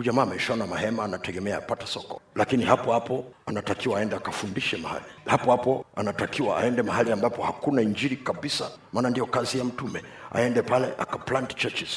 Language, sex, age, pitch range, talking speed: Swahili, male, 50-69, 120-135 Hz, 155 wpm